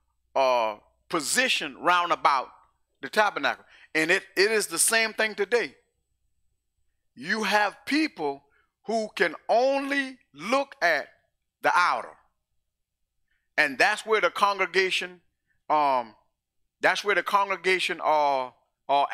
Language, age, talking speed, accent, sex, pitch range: English, 40-59, 115 wpm, American, male, 160-250 Hz